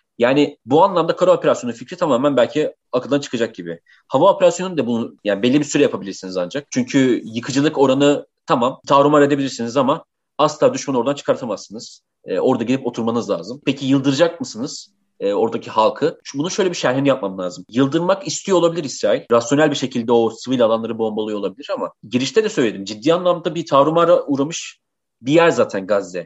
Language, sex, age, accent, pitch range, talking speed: Turkish, male, 30-49, native, 125-165 Hz, 170 wpm